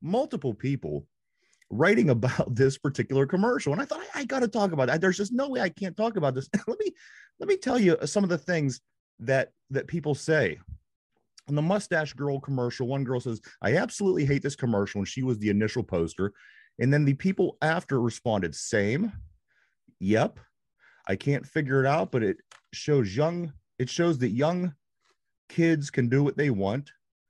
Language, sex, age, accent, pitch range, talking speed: English, male, 30-49, American, 115-160 Hz, 185 wpm